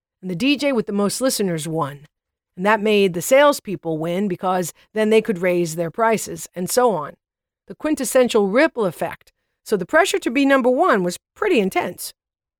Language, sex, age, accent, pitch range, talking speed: English, female, 50-69, American, 185-240 Hz, 180 wpm